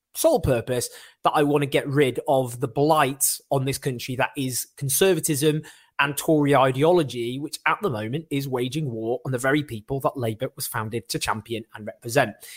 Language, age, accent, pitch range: English, 20-39, British, 125-210 Hz